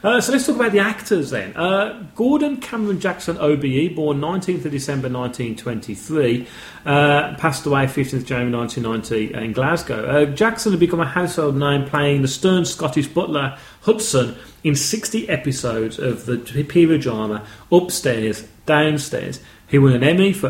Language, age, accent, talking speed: English, 40-59, British, 155 wpm